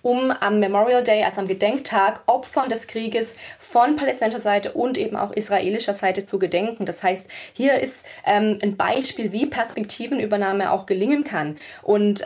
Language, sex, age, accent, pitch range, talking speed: German, female, 20-39, German, 200-235 Hz, 160 wpm